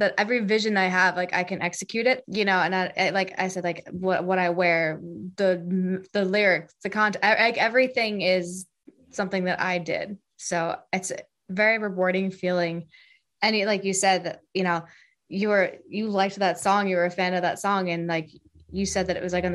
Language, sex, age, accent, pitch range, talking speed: English, female, 20-39, American, 175-200 Hz, 220 wpm